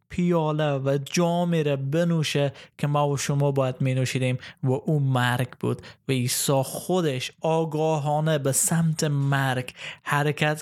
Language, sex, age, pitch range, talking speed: Persian, male, 20-39, 135-160 Hz, 130 wpm